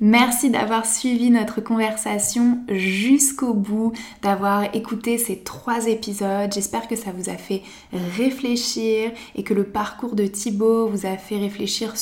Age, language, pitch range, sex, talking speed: 20-39, French, 200-225 Hz, female, 145 wpm